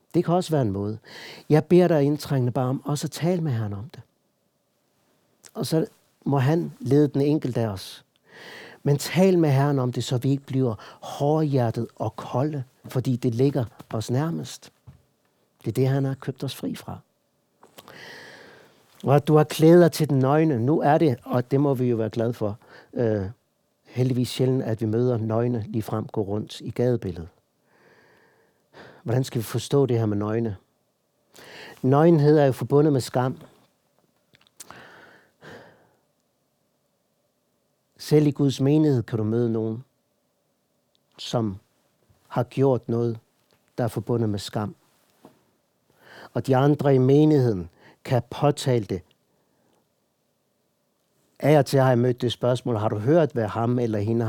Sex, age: male, 60-79